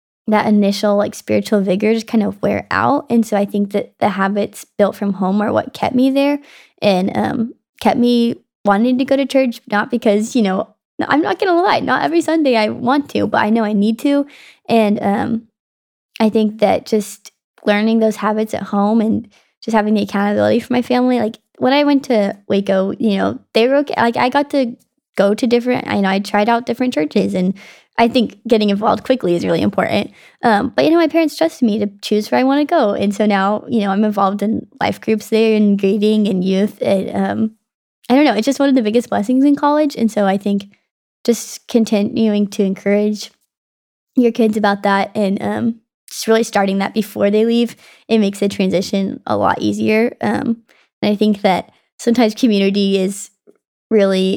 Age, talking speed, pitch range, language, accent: 20-39, 210 wpm, 205-240 Hz, English, American